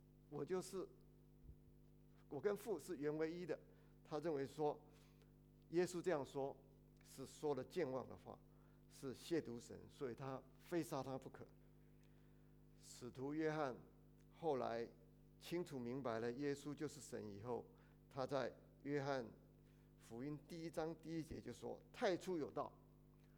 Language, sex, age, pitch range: English, male, 50-69, 130-155 Hz